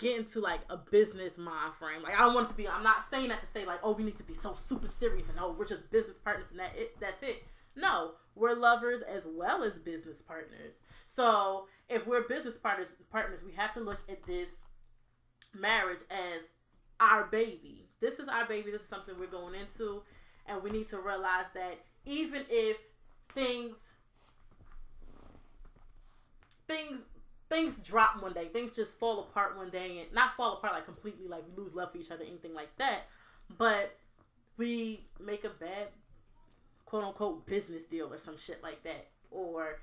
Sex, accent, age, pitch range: female, American, 20-39, 180-230 Hz